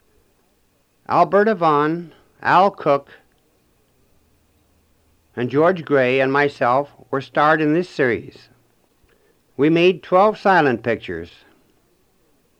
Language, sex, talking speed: English, male, 90 wpm